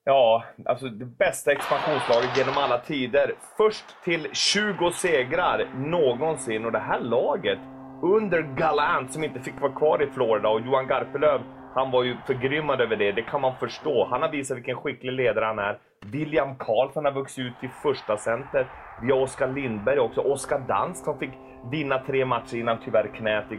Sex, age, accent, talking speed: male, 30-49, Swedish, 175 wpm